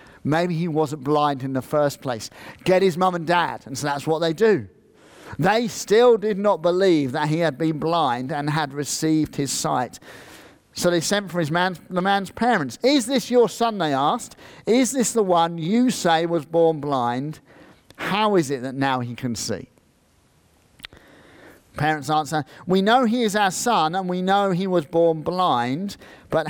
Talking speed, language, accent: 185 wpm, English, British